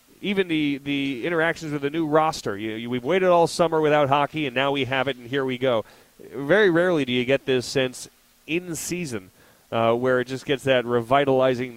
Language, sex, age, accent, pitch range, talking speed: English, male, 30-49, American, 115-140 Hz, 200 wpm